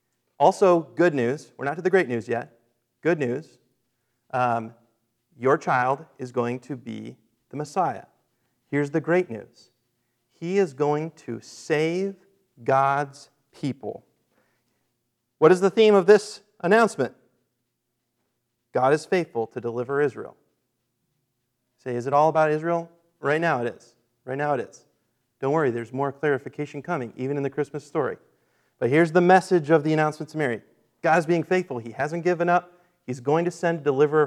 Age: 40-59